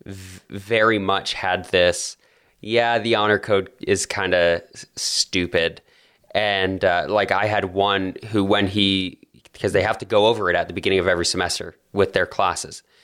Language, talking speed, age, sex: English, 170 wpm, 20-39, male